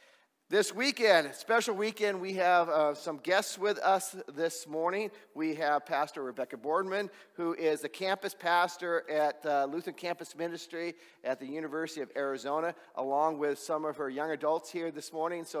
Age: 40-59